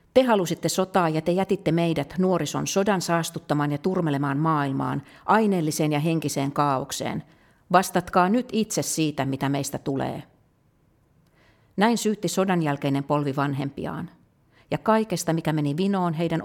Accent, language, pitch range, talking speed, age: native, Finnish, 145-180 Hz, 130 wpm, 50-69